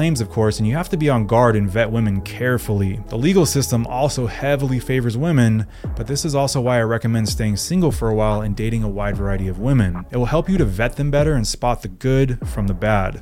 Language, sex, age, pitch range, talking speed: English, male, 20-39, 110-130 Hz, 250 wpm